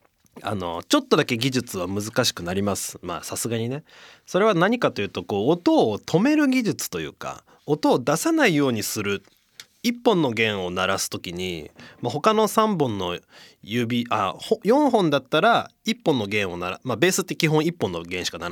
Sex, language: male, Japanese